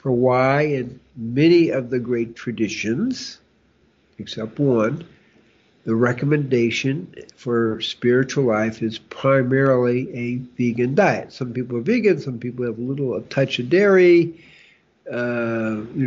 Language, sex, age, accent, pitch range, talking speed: English, male, 60-79, American, 120-145 Hz, 125 wpm